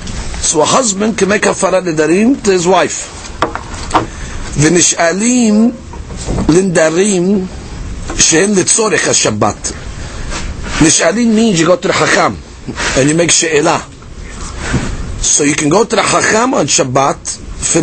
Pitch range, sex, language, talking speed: 150-190 Hz, male, English, 125 wpm